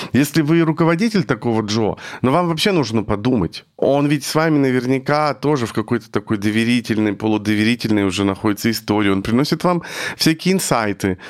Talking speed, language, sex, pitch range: 155 wpm, Russian, male, 110-145 Hz